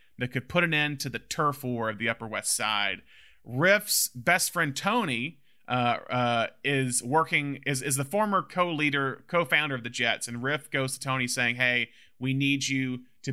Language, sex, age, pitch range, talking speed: English, male, 30-49, 125-150 Hz, 200 wpm